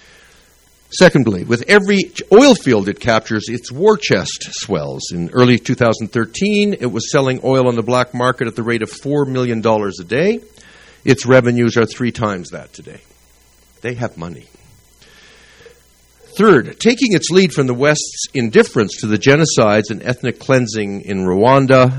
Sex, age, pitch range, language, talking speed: male, 60-79, 105-140 Hz, English, 155 wpm